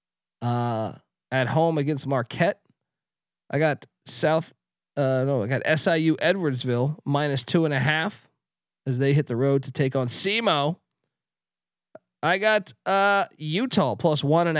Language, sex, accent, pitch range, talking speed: English, male, American, 130-175 Hz, 145 wpm